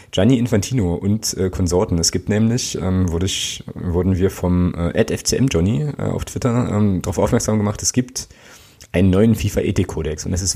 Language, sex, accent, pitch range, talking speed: German, male, German, 95-120 Hz, 175 wpm